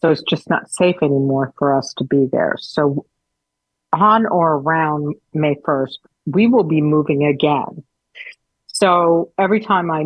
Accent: American